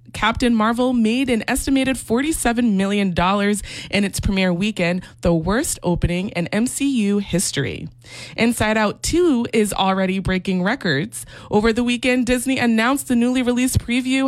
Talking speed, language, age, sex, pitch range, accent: 140 wpm, English, 20-39, female, 185-240 Hz, American